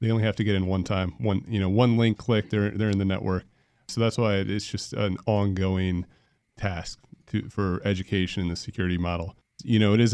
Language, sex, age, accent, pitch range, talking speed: English, male, 30-49, American, 90-110 Hz, 225 wpm